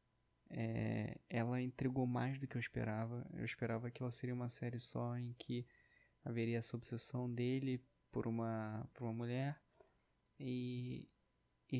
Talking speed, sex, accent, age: 145 wpm, male, Brazilian, 20-39